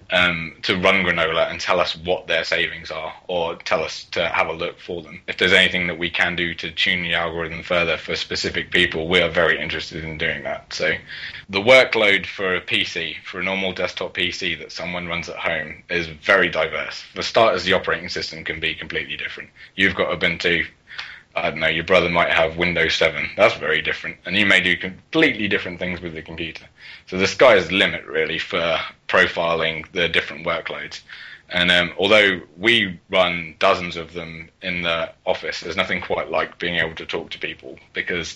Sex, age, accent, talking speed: male, 20-39, British, 200 wpm